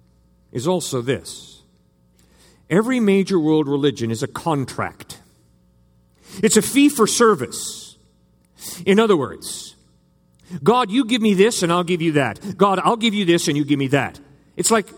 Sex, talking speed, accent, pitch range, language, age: male, 160 wpm, American, 125-195 Hz, English, 50-69